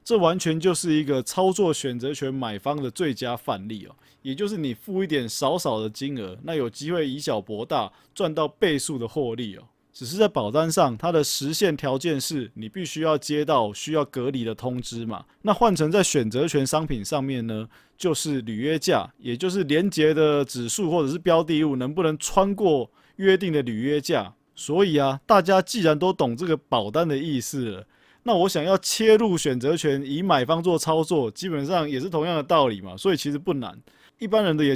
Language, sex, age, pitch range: Chinese, male, 20-39, 125-170 Hz